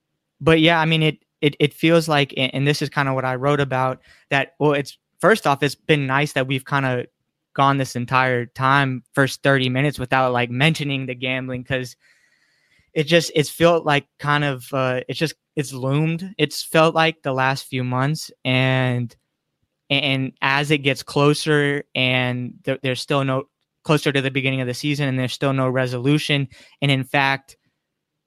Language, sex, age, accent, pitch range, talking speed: English, male, 20-39, American, 130-145 Hz, 185 wpm